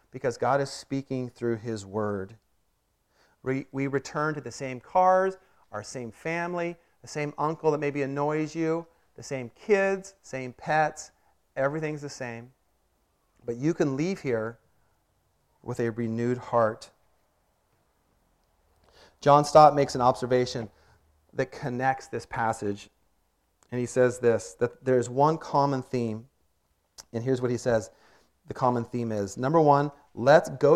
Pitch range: 115-150 Hz